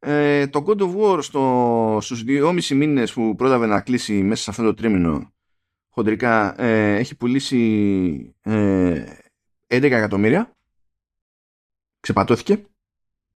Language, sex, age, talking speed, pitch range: Greek, male, 30-49, 115 wpm, 115-155 Hz